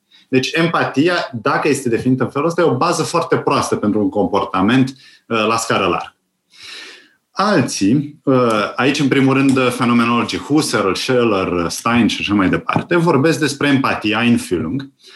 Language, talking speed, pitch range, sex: Romanian, 150 wpm, 125-185 Hz, male